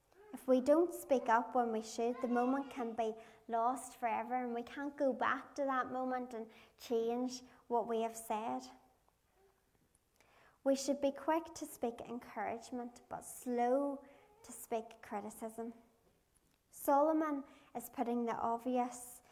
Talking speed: 140 wpm